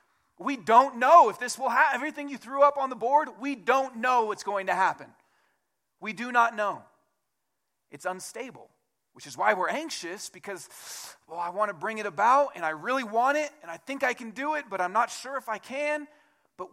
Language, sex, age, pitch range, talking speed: English, male, 30-49, 170-265 Hz, 215 wpm